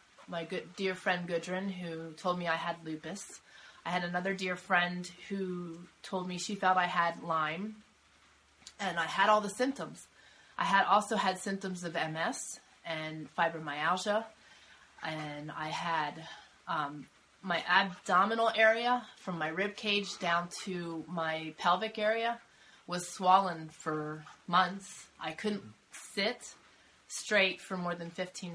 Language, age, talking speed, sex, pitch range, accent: English, 30-49, 140 wpm, female, 160-195 Hz, American